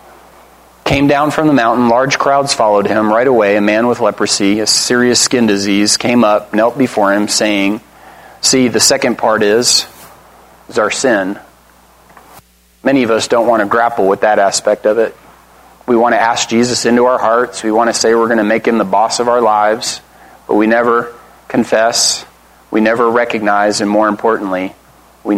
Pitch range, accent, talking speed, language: 105-120 Hz, American, 185 wpm, English